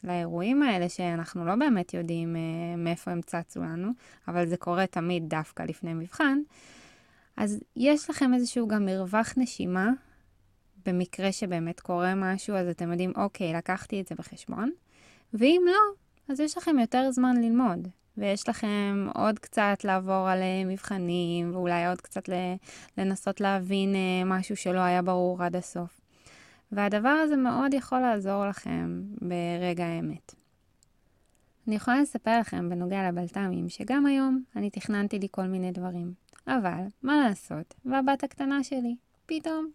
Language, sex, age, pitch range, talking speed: Hebrew, female, 20-39, 180-255 Hz, 140 wpm